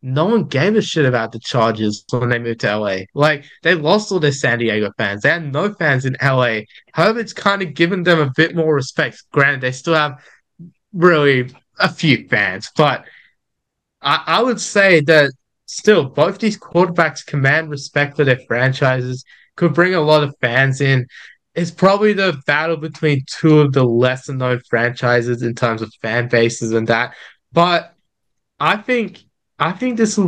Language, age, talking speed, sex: English, 20-39, 180 wpm, male